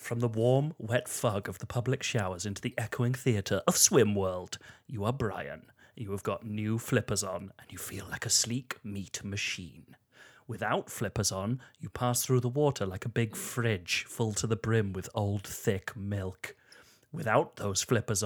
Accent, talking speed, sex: British, 180 wpm, male